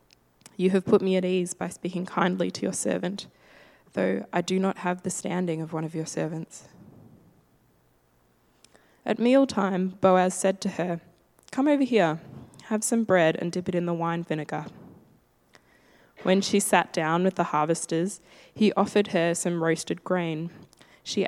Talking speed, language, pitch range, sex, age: 160 wpm, English, 160-190 Hz, female, 10-29